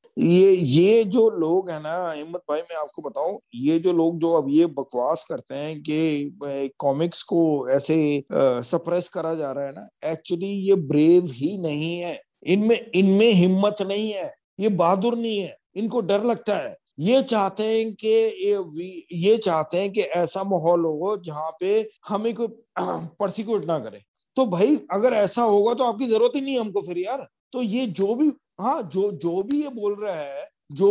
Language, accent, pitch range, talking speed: English, Indian, 165-220 Hz, 175 wpm